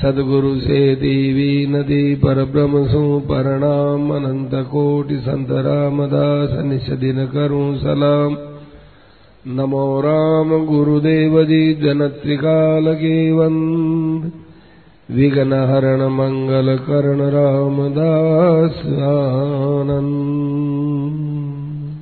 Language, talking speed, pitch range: Hindi, 70 wpm, 135-150 Hz